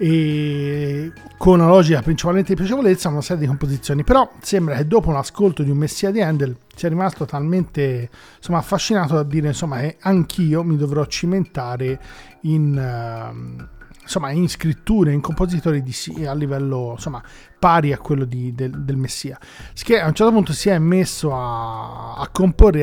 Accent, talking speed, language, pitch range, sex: native, 165 wpm, Italian, 135-175 Hz, male